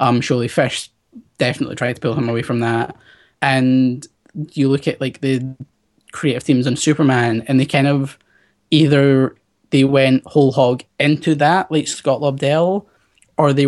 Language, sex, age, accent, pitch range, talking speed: English, male, 10-29, British, 125-150 Hz, 160 wpm